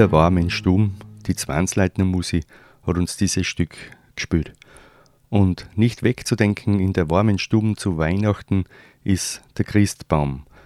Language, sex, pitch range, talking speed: German, male, 85-110 Hz, 125 wpm